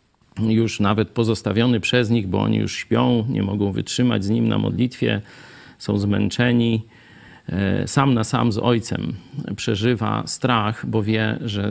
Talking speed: 145 wpm